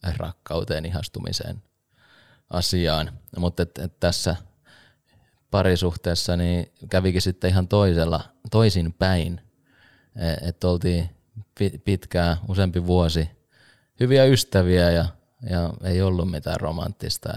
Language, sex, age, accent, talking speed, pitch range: Finnish, male, 20-39, native, 90 wpm, 85-100 Hz